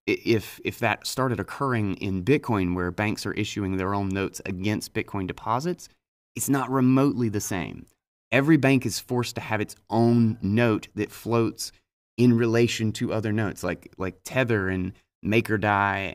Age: 30-49